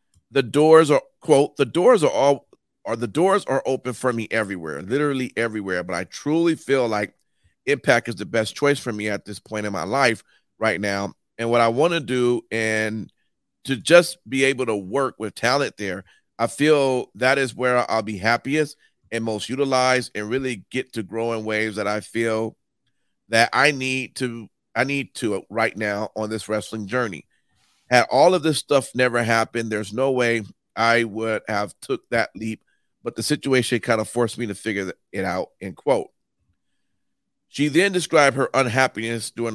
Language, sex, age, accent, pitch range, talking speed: English, male, 40-59, American, 110-135 Hz, 185 wpm